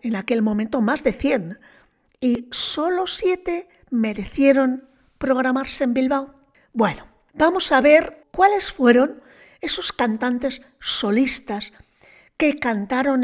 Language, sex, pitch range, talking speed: Spanish, female, 215-275 Hz, 110 wpm